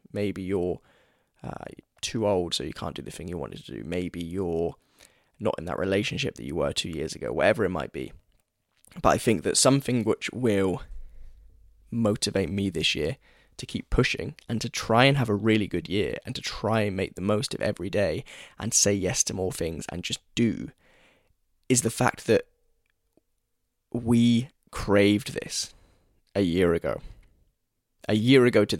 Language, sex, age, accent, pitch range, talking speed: English, male, 10-29, British, 95-115 Hz, 180 wpm